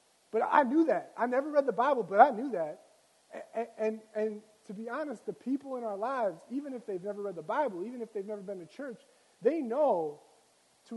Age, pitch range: 30-49, 175-225 Hz